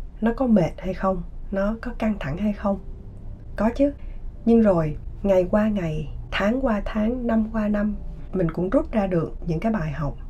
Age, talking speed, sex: 20-39, 190 wpm, female